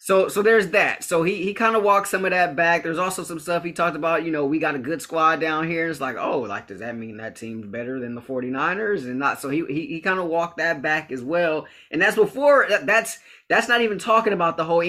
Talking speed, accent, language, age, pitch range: 280 wpm, American, English, 20-39, 120-165 Hz